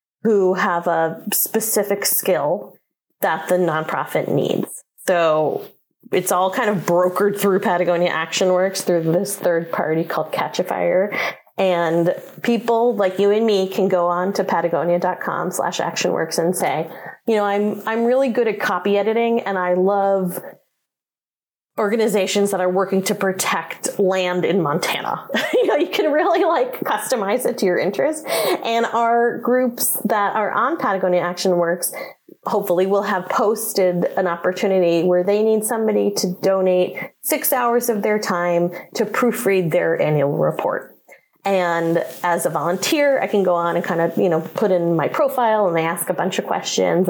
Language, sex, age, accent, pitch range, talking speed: English, female, 30-49, American, 175-215 Hz, 160 wpm